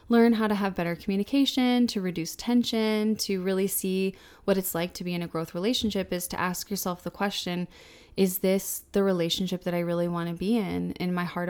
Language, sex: English, female